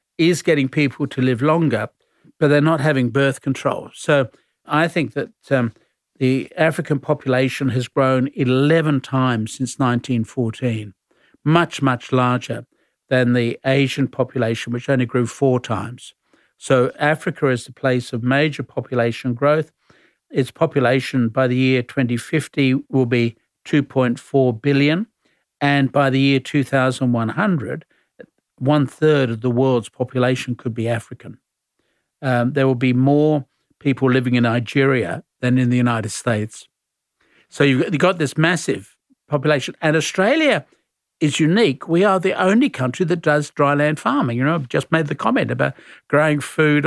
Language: English